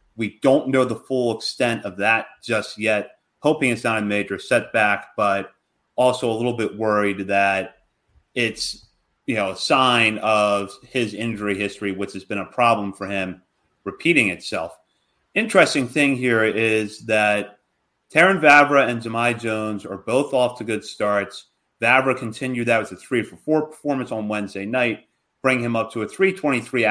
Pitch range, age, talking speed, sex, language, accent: 105-130 Hz, 30-49, 170 wpm, male, English, American